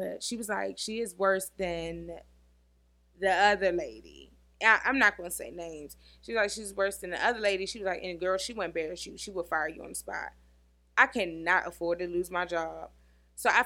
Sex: female